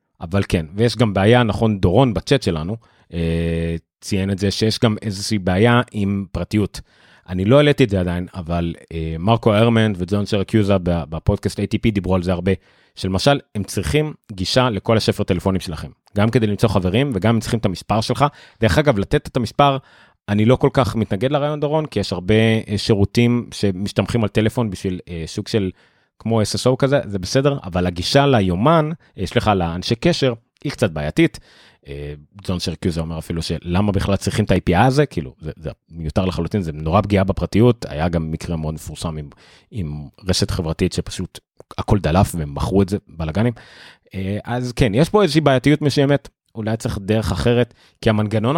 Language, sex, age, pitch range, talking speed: Hebrew, male, 30-49, 95-125 Hz, 175 wpm